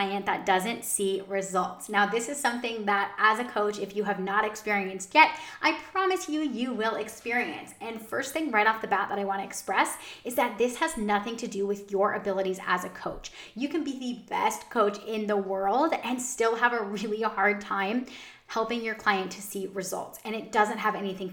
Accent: American